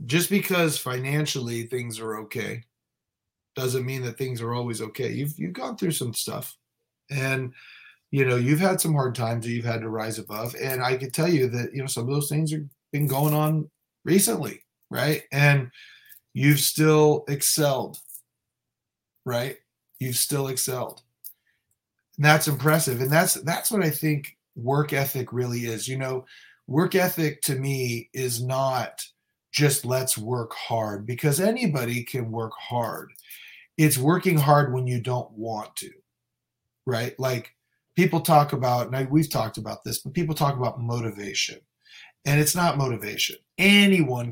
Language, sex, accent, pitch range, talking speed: English, male, American, 120-150 Hz, 160 wpm